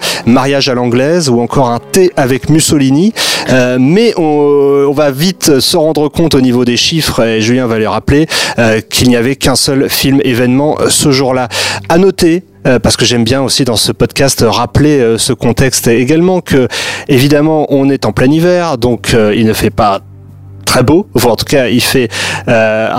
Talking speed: 195 wpm